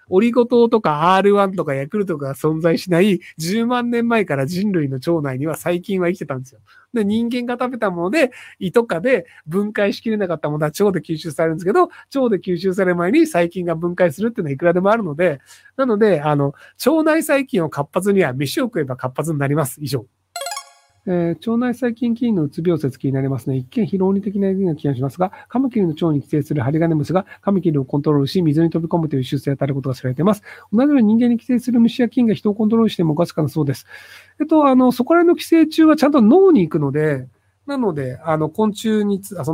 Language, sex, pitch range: Japanese, male, 145-225 Hz